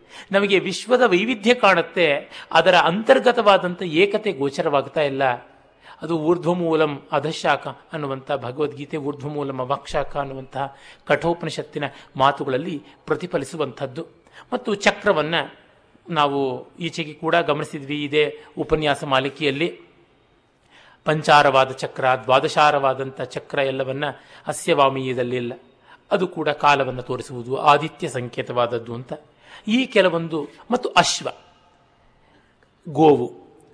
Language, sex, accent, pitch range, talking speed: Kannada, male, native, 135-175 Hz, 85 wpm